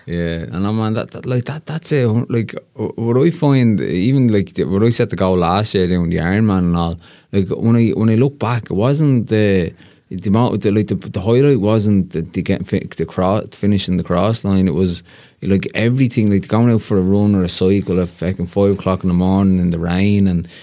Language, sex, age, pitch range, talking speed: English, male, 20-39, 95-105 Hz, 235 wpm